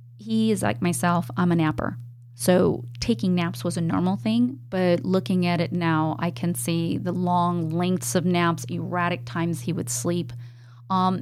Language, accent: English, American